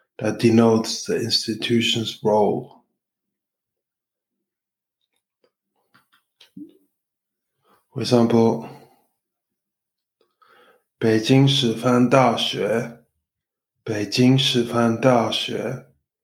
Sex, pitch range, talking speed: male, 115-125 Hz, 50 wpm